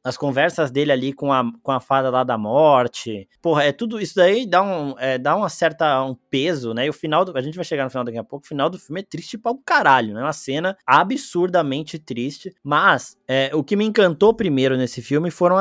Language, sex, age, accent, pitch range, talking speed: Portuguese, male, 20-39, Brazilian, 135-175 Hz, 245 wpm